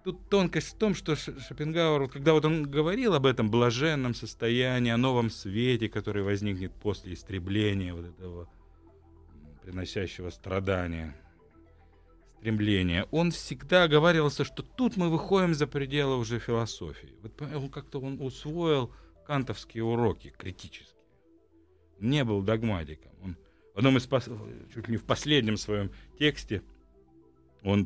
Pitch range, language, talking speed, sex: 90-135 Hz, Russian, 130 wpm, male